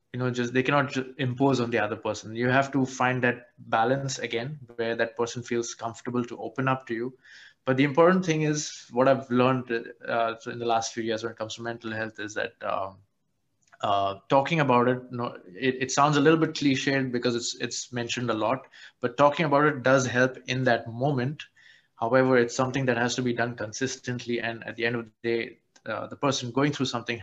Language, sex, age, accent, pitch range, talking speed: English, male, 20-39, Indian, 115-135 Hz, 225 wpm